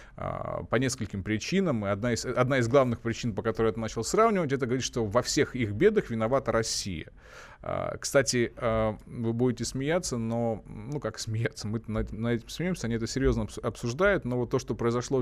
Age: 20-39